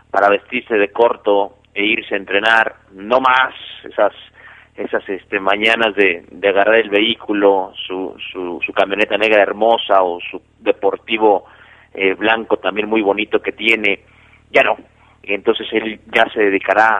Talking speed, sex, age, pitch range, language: 150 wpm, male, 40-59, 100-150 Hz, Spanish